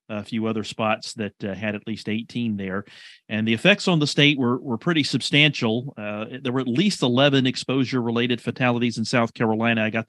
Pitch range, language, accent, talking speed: 105-125 Hz, English, American, 200 wpm